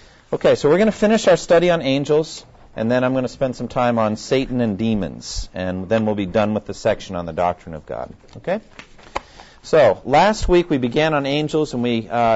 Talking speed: 225 wpm